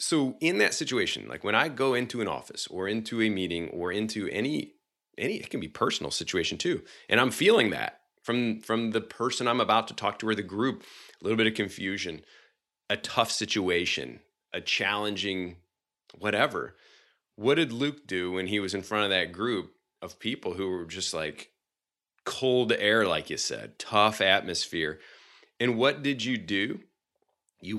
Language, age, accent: English, 30-49, American